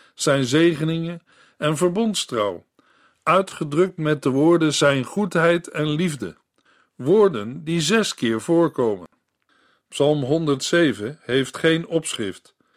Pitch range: 140-170 Hz